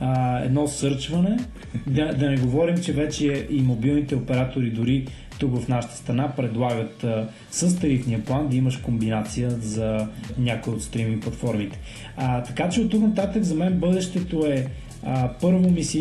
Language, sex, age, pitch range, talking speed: Bulgarian, male, 20-39, 120-145 Hz, 165 wpm